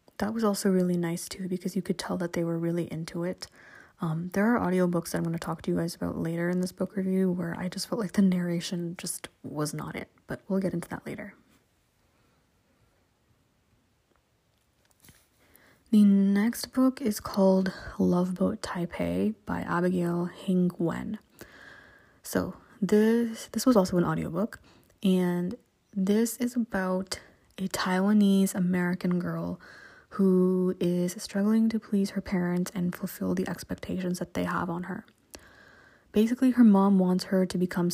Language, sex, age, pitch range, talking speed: English, female, 20-39, 170-200 Hz, 160 wpm